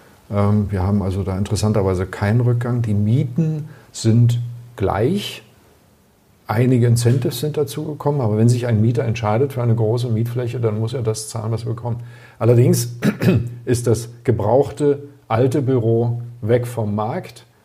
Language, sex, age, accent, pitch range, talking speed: German, male, 50-69, German, 105-120 Hz, 145 wpm